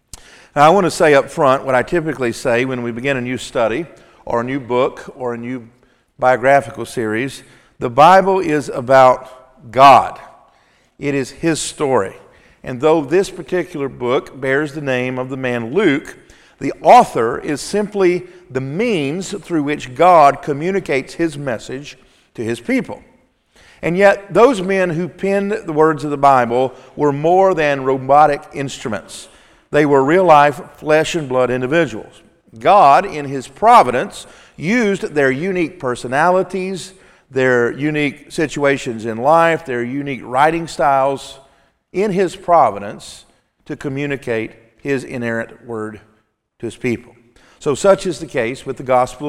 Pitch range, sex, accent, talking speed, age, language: 125-175 Hz, male, American, 145 wpm, 50-69, English